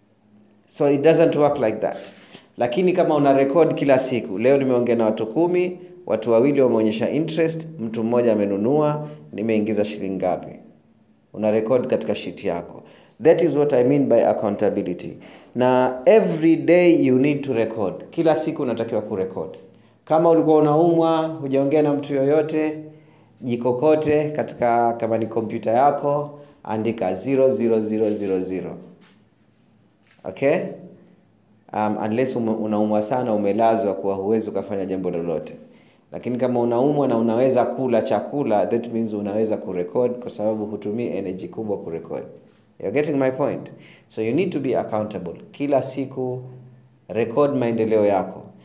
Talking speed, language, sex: 130 wpm, Swahili, male